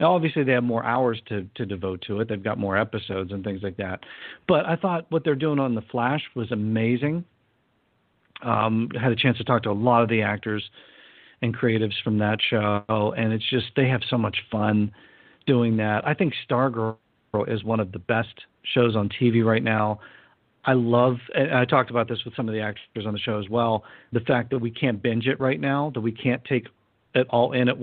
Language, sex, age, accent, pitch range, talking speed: English, male, 50-69, American, 110-135 Hz, 220 wpm